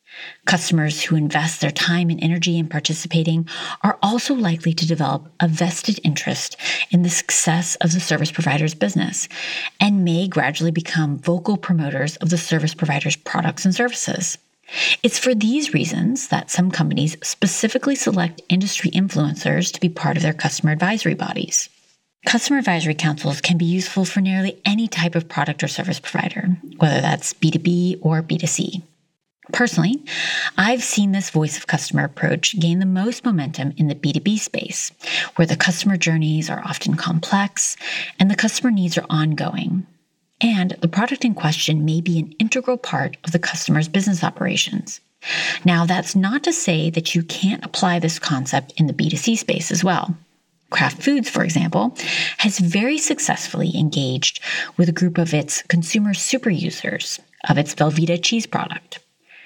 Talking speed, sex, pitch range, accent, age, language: 160 wpm, female, 160-200 Hz, American, 30-49, English